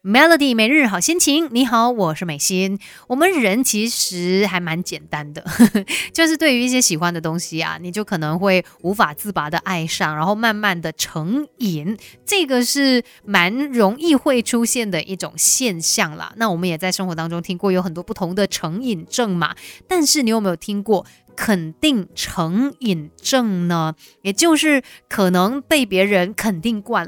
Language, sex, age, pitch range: Chinese, female, 20-39, 180-240 Hz